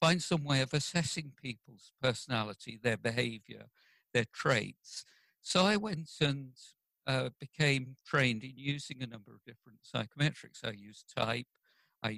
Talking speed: 145 wpm